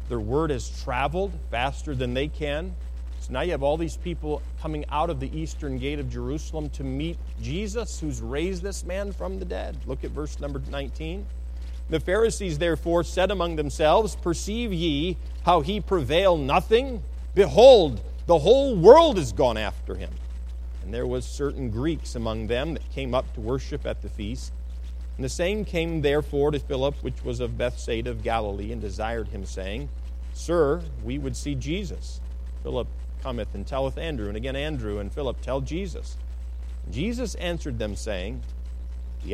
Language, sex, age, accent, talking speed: English, male, 40-59, American, 170 wpm